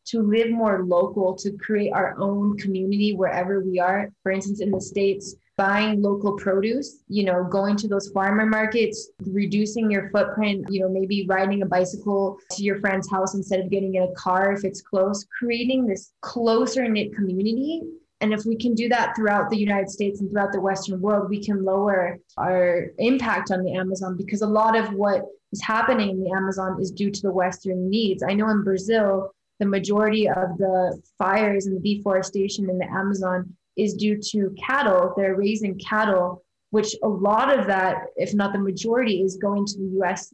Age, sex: 20-39, female